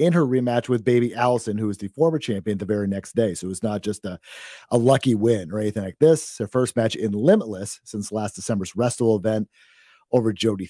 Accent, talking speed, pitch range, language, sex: American, 225 wpm, 110-150 Hz, English, male